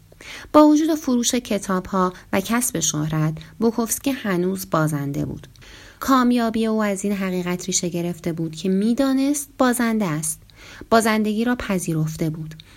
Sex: female